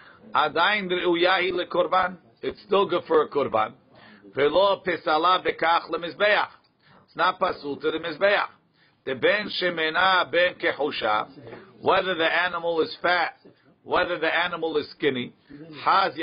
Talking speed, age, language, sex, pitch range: 70 wpm, 50-69, English, male, 150-190 Hz